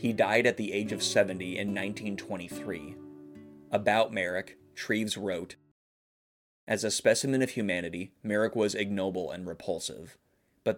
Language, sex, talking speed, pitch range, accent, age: English, male, 135 wpm, 95-105 Hz, American, 20-39